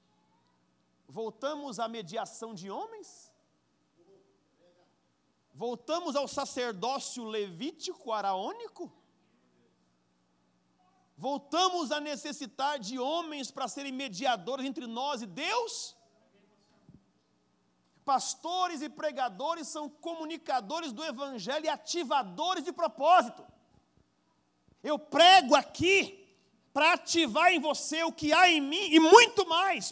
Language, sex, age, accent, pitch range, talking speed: Portuguese, male, 40-59, Brazilian, 260-345 Hz, 95 wpm